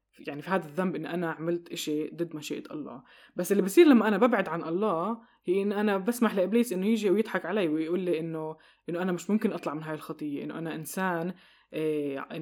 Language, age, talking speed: Arabic, 20-39, 210 wpm